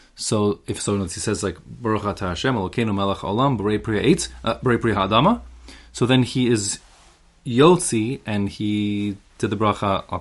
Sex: male